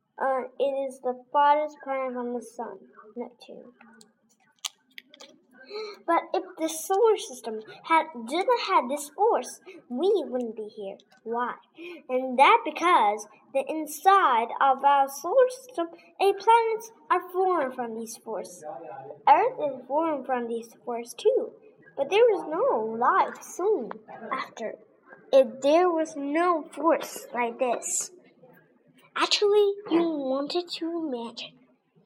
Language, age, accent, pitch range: Chinese, 10-29, American, 250-360 Hz